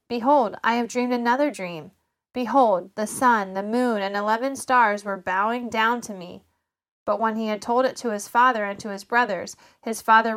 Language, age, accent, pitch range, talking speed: English, 20-39, American, 200-245 Hz, 195 wpm